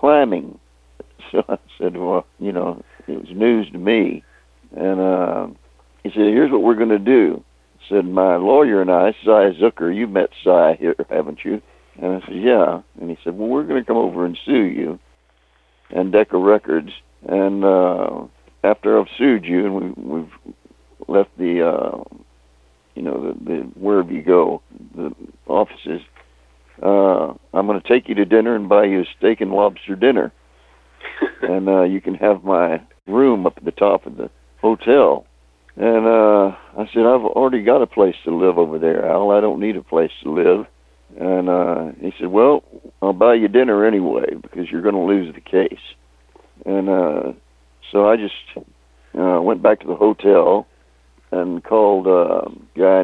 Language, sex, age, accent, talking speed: English, male, 60-79, American, 180 wpm